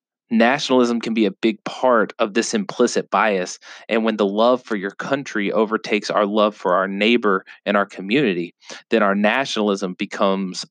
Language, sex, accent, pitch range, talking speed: English, male, American, 100-115 Hz, 170 wpm